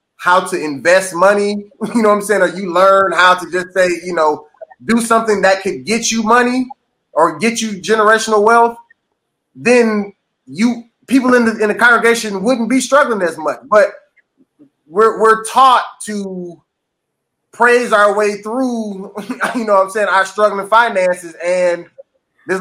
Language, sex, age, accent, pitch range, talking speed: English, male, 20-39, American, 180-220 Hz, 165 wpm